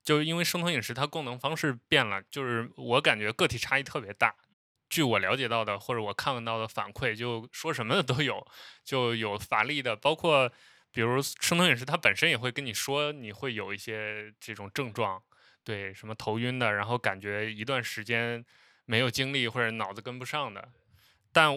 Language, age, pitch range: Chinese, 20-39, 110-140 Hz